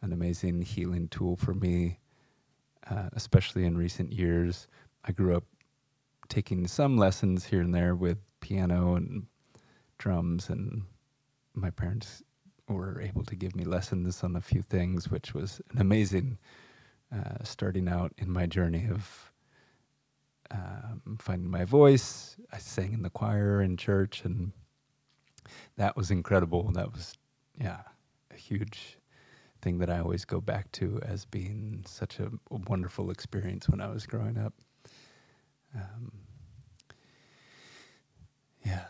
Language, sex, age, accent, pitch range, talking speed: English, male, 30-49, American, 90-120 Hz, 135 wpm